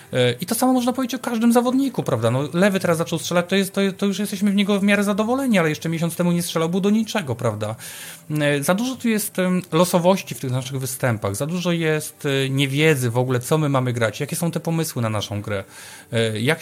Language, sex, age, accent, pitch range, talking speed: Polish, male, 30-49, native, 125-180 Hz, 225 wpm